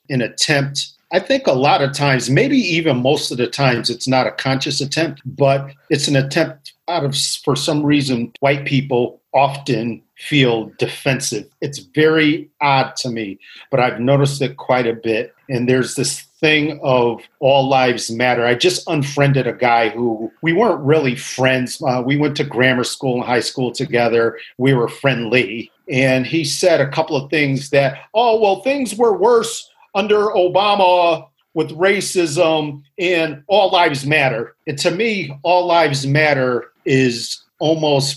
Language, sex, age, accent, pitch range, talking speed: English, male, 40-59, American, 130-160 Hz, 165 wpm